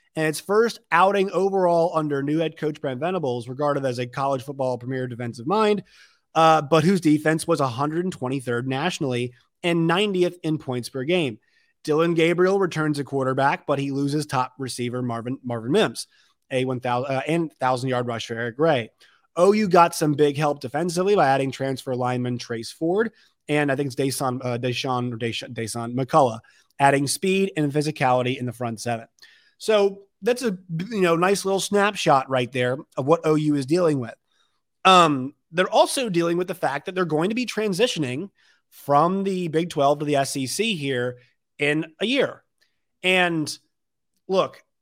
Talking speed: 170 wpm